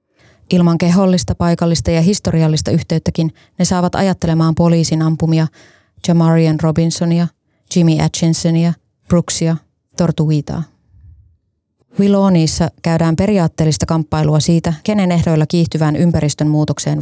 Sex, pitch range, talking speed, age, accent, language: female, 155-170 Hz, 95 wpm, 20-39, native, Finnish